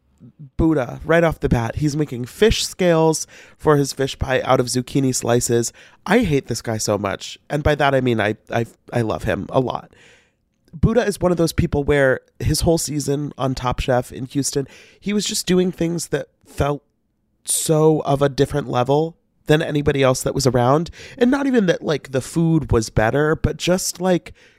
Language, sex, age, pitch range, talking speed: English, male, 30-49, 120-155 Hz, 195 wpm